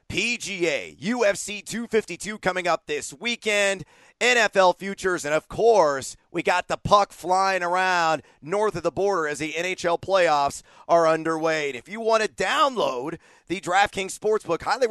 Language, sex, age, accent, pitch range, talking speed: English, male, 40-59, American, 150-200 Hz, 150 wpm